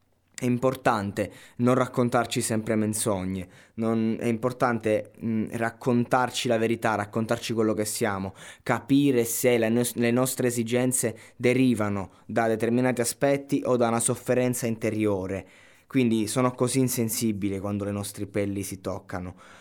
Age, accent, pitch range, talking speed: 20-39, native, 100-120 Hz, 130 wpm